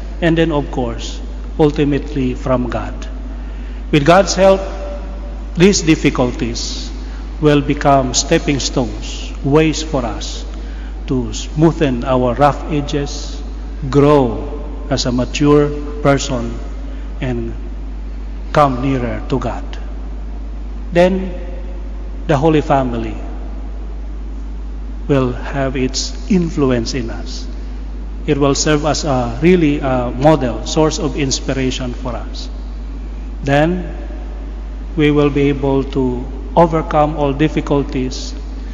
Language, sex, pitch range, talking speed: Indonesian, male, 130-155 Hz, 100 wpm